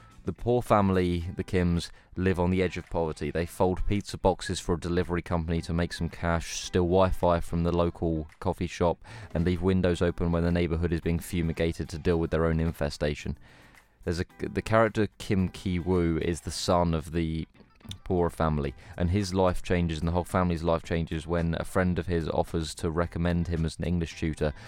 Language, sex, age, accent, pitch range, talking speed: English, male, 20-39, British, 80-90 Hz, 200 wpm